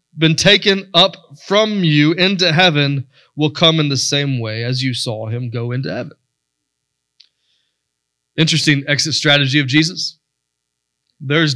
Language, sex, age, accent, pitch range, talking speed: English, male, 20-39, American, 130-165 Hz, 135 wpm